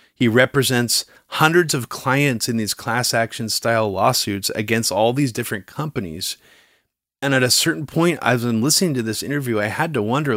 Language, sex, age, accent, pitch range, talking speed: English, male, 30-49, American, 110-140 Hz, 180 wpm